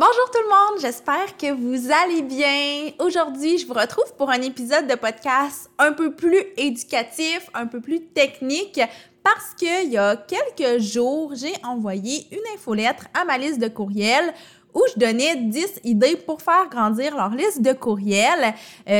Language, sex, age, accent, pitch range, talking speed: French, female, 20-39, Canadian, 220-305 Hz, 170 wpm